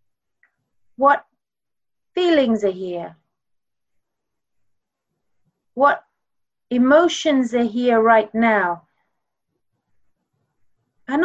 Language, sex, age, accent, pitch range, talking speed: English, female, 30-49, British, 190-280 Hz, 60 wpm